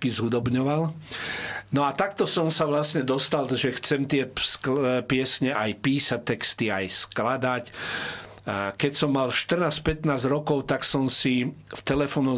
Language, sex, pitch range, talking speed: Slovak, male, 120-150 Hz, 135 wpm